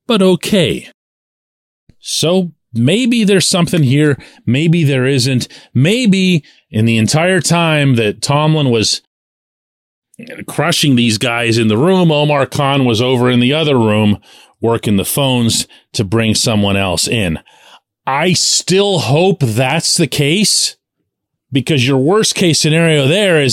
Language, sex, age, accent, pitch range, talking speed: English, male, 40-59, American, 115-165 Hz, 135 wpm